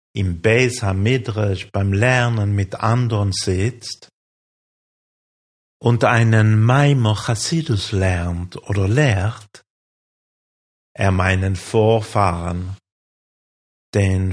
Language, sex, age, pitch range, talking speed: German, male, 50-69, 95-115 Hz, 75 wpm